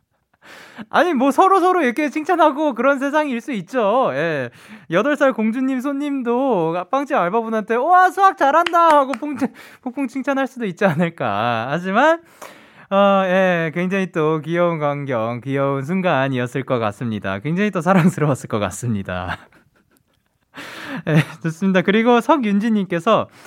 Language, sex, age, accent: Korean, male, 20-39, native